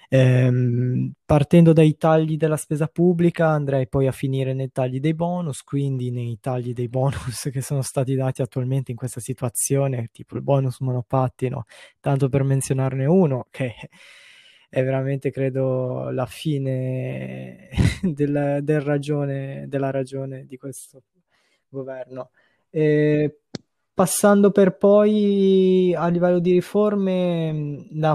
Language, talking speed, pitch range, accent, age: Italian, 120 wpm, 130-150 Hz, native, 20-39